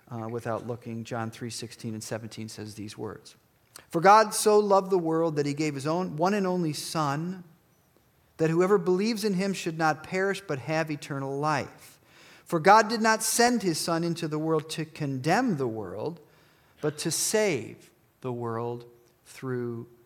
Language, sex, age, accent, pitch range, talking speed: English, male, 40-59, American, 115-165 Hz, 170 wpm